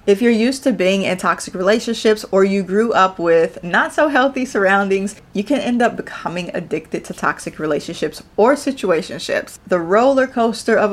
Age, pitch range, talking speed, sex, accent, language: 30-49, 175-215 Hz, 175 wpm, female, American, English